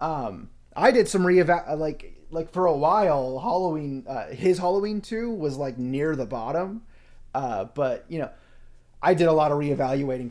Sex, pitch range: male, 125-165 Hz